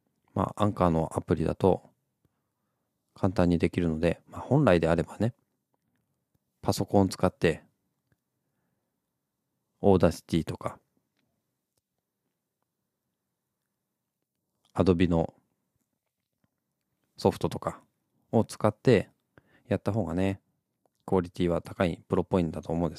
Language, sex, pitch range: Japanese, male, 85-115 Hz